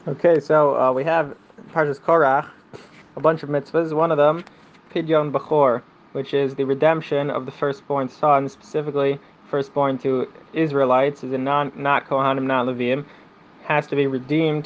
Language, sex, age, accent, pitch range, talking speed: English, male, 20-39, American, 130-155 Hz, 155 wpm